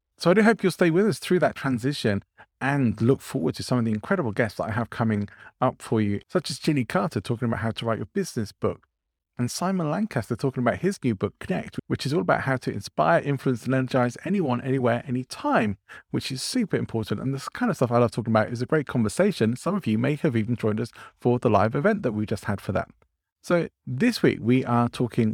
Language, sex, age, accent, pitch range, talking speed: English, male, 30-49, British, 110-140 Hz, 240 wpm